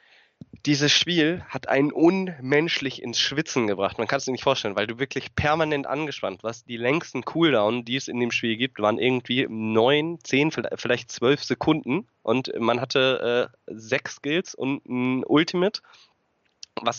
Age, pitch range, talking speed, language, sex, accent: 20-39, 120-170 Hz, 165 wpm, German, male, German